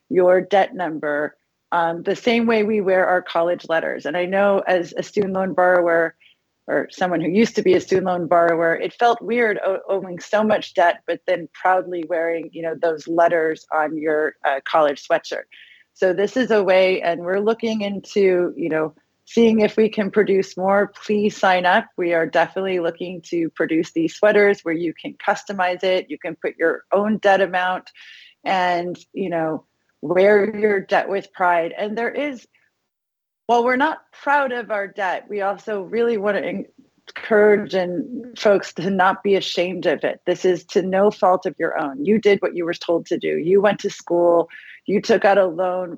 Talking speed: 190 wpm